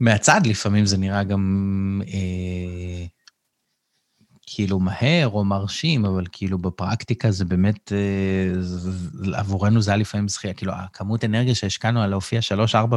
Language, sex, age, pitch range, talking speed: Hebrew, male, 30-49, 95-115 Hz, 130 wpm